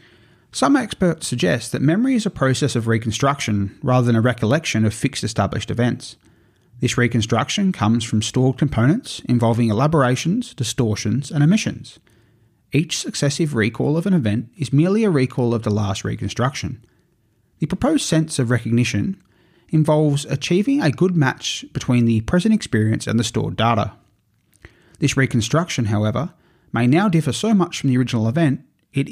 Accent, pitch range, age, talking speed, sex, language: Australian, 115-160 Hz, 30-49, 155 wpm, male, English